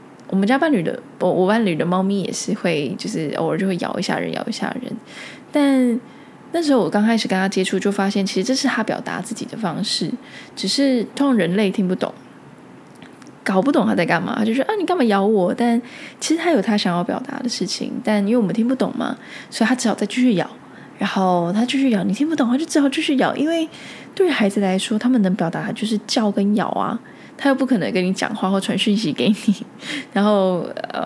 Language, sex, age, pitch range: Chinese, female, 10-29, 190-255 Hz